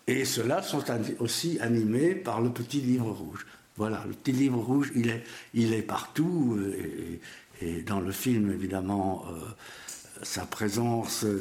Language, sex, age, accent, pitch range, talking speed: French, male, 60-79, French, 100-120 Hz, 155 wpm